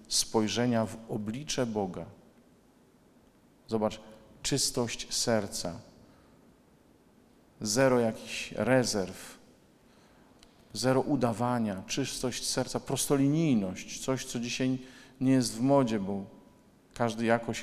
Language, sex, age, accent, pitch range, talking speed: Polish, male, 50-69, native, 105-130 Hz, 85 wpm